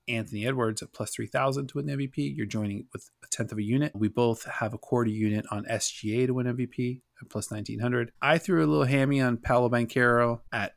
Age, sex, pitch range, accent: 30-49, male, 105-125 Hz, American